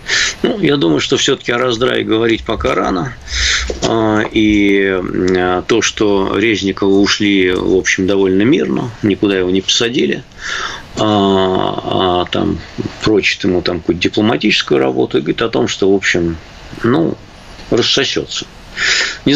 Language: Russian